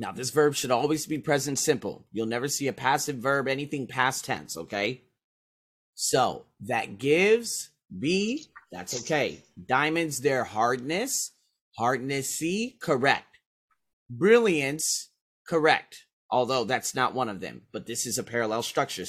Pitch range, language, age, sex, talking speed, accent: 120-175 Hz, English, 30-49, male, 140 wpm, American